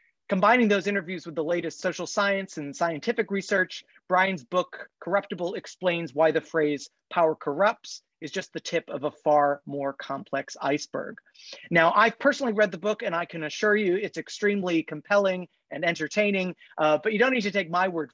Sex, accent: male, American